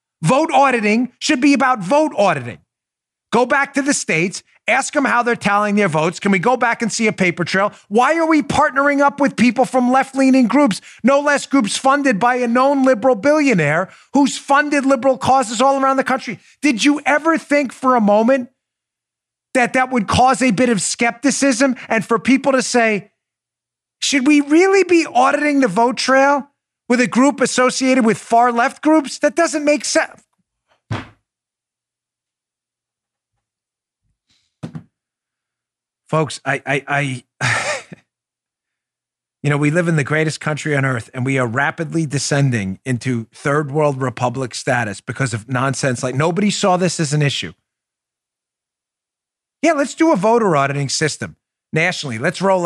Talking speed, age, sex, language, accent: 155 wpm, 30-49, male, English, American